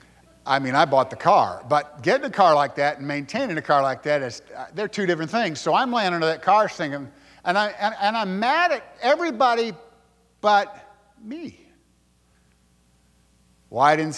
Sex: male